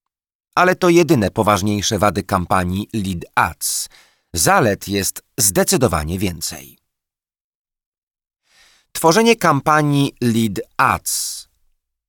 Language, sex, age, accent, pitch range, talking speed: Polish, male, 40-59, native, 95-150 Hz, 80 wpm